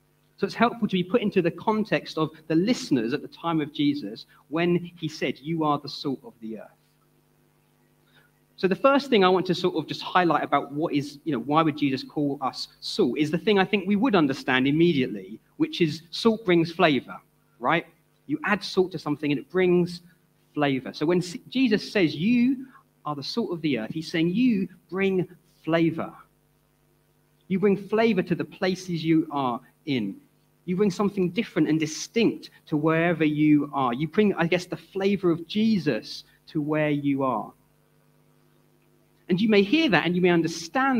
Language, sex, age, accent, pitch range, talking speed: English, male, 30-49, British, 155-200 Hz, 190 wpm